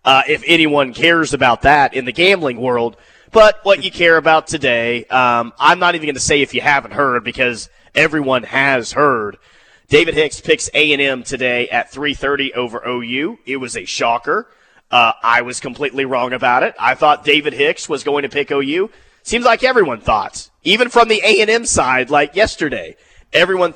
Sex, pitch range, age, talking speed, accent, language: male, 135-195 Hz, 30-49, 180 wpm, American, English